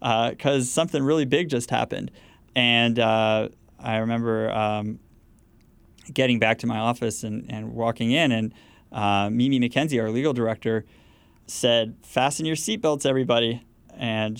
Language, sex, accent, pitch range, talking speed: English, male, American, 110-140 Hz, 140 wpm